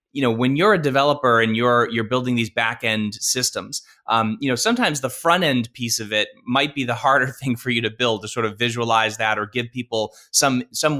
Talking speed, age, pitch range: 225 wpm, 20-39, 115-140 Hz